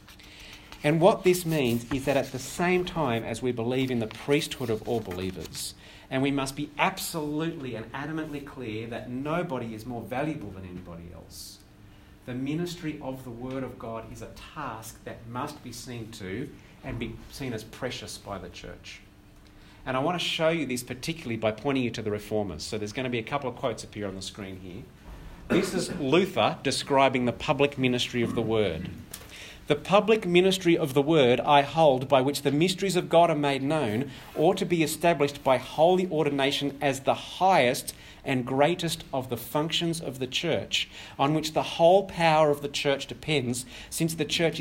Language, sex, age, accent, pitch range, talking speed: English, male, 40-59, Australian, 110-150 Hz, 190 wpm